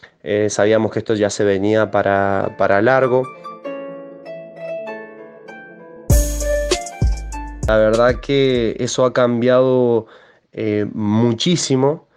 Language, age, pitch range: Spanish, 20-39, 105-125 Hz